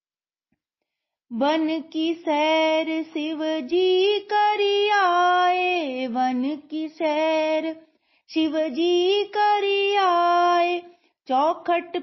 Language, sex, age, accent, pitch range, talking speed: Hindi, female, 30-49, native, 280-335 Hz, 65 wpm